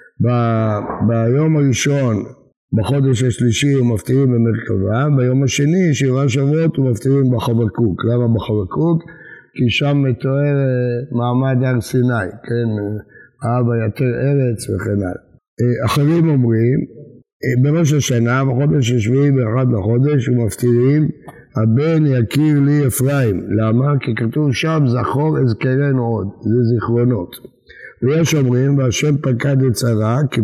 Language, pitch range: Hebrew, 115-140 Hz